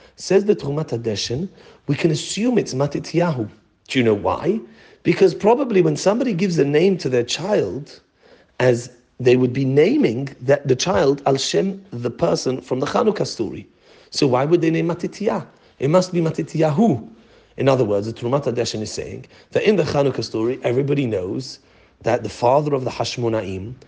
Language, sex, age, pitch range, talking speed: English, male, 40-59, 125-180 Hz, 175 wpm